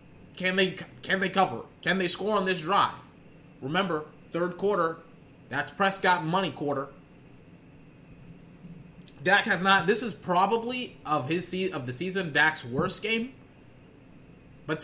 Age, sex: 20-39, male